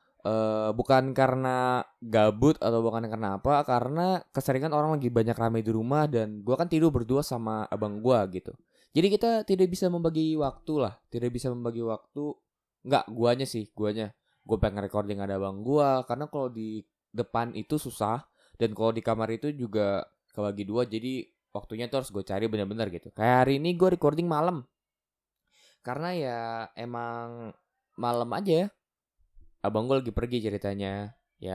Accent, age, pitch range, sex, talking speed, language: native, 20-39, 100-145 Hz, male, 165 wpm, Indonesian